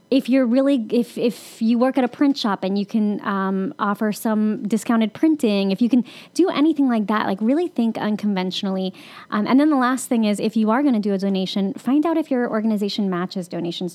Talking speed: 225 wpm